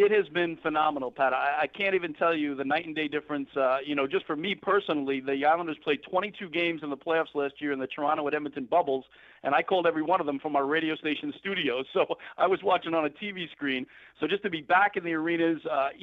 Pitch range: 145-175 Hz